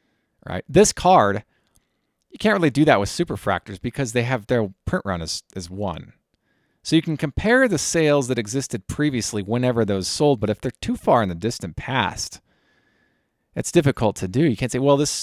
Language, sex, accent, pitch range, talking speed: English, male, American, 100-140 Hz, 195 wpm